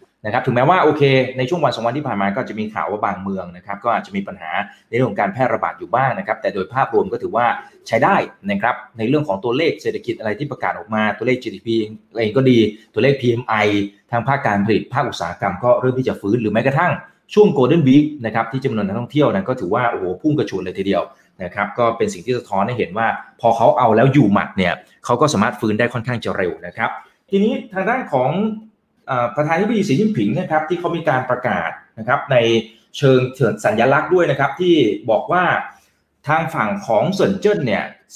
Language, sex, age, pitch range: Thai, male, 20-39, 115-180 Hz